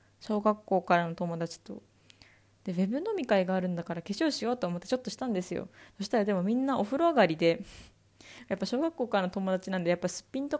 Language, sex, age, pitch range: Japanese, female, 20-39, 165-215 Hz